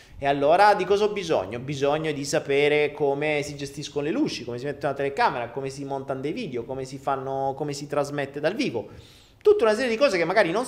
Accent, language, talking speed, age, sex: native, Italian, 230 wpm, 30-49, male